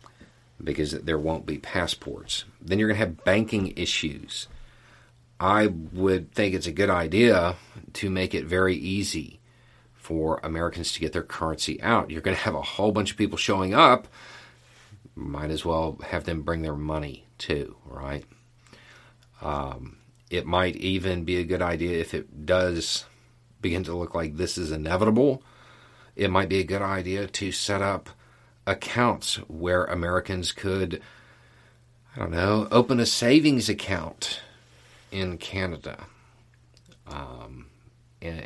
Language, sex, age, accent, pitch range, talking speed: English, male, 40-59, American, 80-110 Hz, 145 wpm